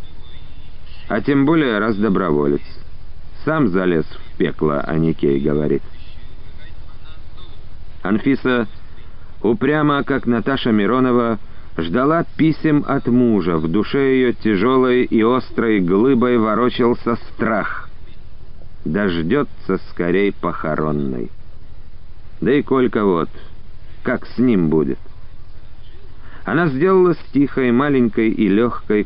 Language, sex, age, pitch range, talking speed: Russian, male, 50-69, 95-135 Hz, 95 wpm